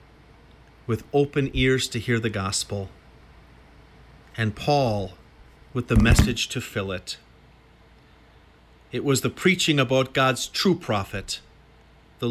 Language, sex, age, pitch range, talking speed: English, male, 40-59, 110-140 Hz, 115 wpm